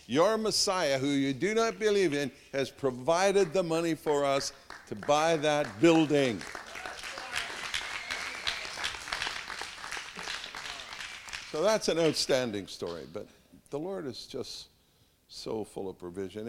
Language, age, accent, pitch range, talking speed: English, 60-79, American, 100-140 Hz, 115 wpm